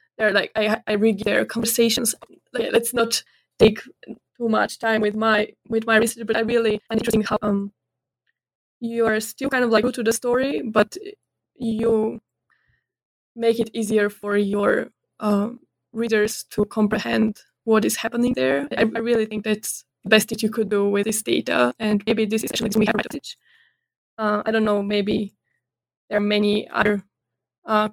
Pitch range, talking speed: 210-230 Hz, 175 wpm